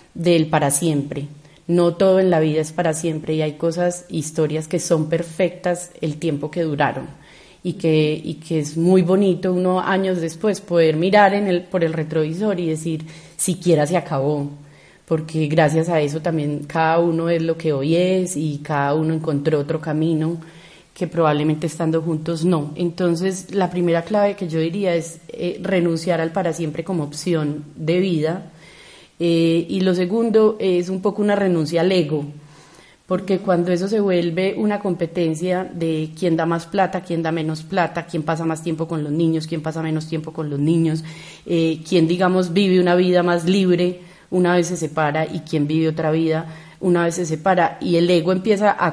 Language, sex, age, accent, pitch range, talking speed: Spanish, female, 30-49, Colombian, 160-180 Hz, 185 wpm